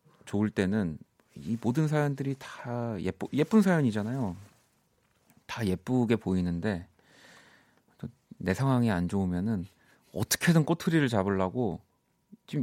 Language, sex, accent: Korean, male, native